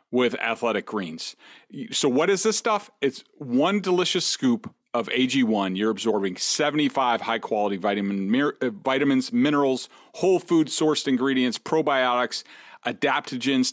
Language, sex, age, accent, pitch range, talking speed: English, male, 40-59, American, 130-155 Hz, 110 wpm